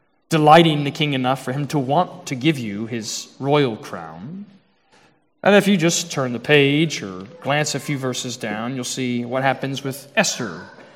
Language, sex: English, male